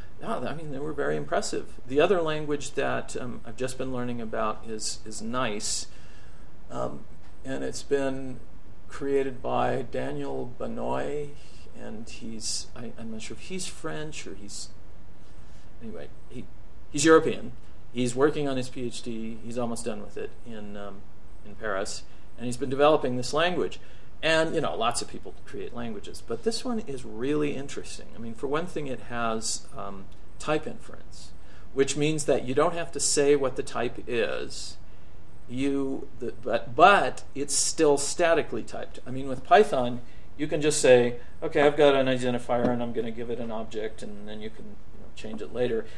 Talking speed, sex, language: 180 wpm, male, English